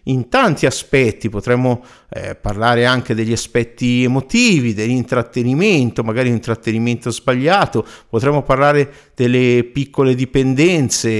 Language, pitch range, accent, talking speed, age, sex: Italian, 105-130 Hz, native, 100 wpm, 50-69, male